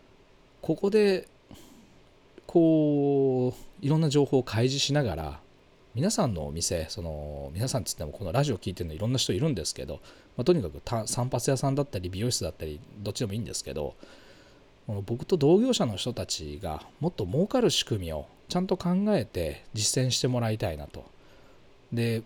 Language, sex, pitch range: Japanese, male, 100-155 Hz